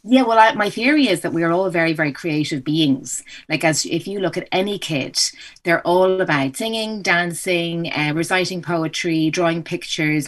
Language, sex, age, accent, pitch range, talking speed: English, female, 30-49, Irish, 150-175 Hz, 185 wpm